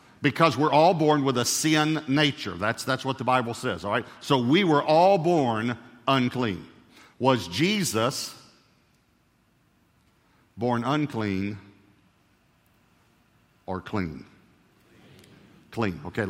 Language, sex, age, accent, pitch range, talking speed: English, male, 50-69, American, 105-165 Hz, 110 wpm